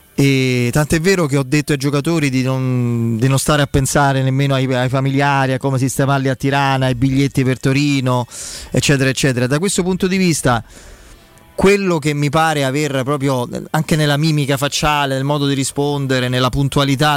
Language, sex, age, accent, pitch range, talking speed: Italian, male, 30-49, native, 120-145 Hz, 180 wpm